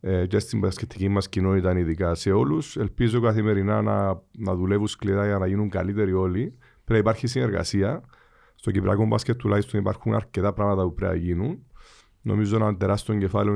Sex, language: male, Greek